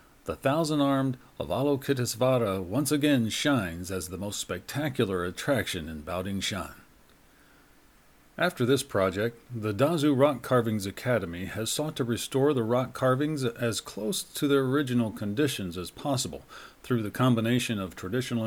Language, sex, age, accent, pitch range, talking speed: English, male, 40-59, American, 105-135 Hz, 135 wpm